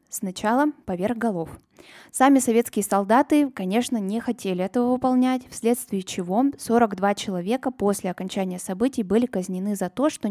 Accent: native